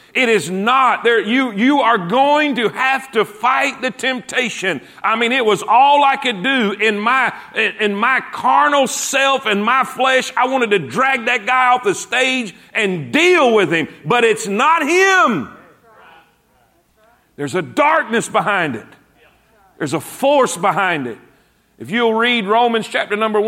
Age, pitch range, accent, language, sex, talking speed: 40-59, 210-255 Hz, American, English, male, 165 wpm